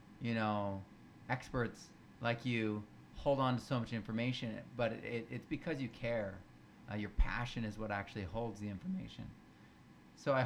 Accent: American